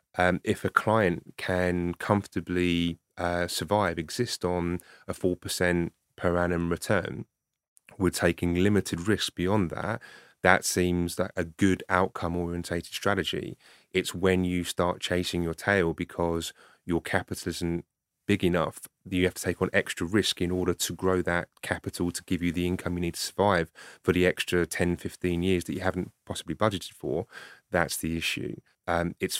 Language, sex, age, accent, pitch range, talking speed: English, male, 30-49, British, 85-90 Hz, 165 wpm